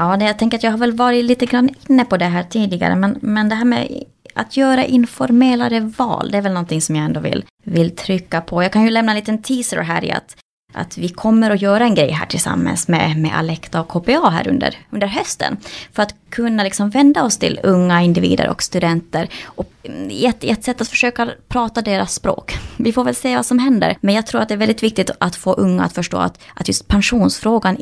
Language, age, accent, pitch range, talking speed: Swedish, 20-39, Norwegian, 180-230 Hz, 235 wpm